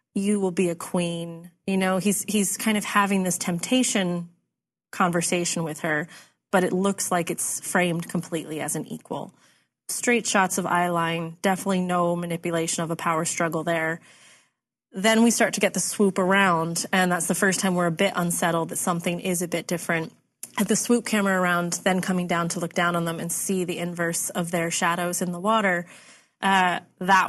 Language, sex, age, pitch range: English, female, 20-39, 170-195 Hz